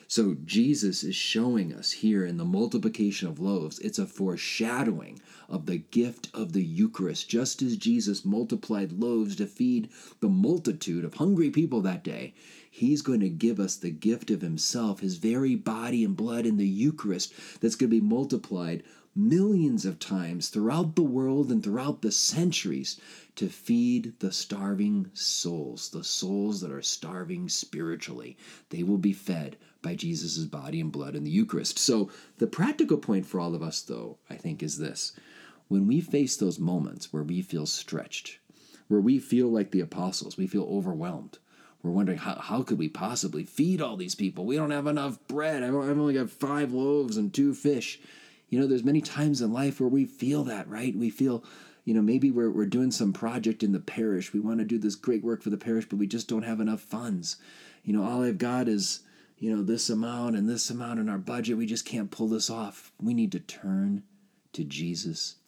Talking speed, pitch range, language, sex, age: 195 wpm, 100-160 Hz, English, male, 40-59